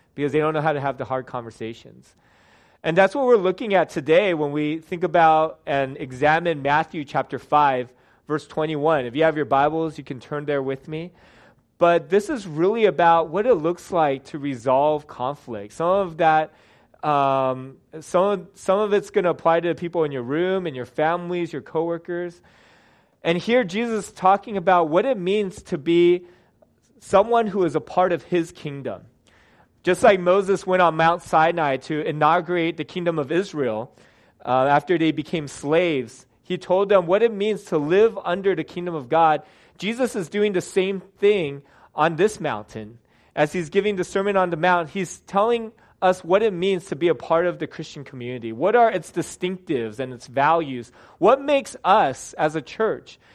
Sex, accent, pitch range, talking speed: male, American, 150-185 Hz, 190 wpm